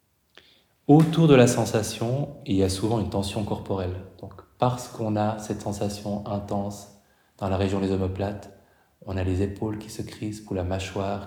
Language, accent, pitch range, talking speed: French, French, 95-110 Hz, 175 wpm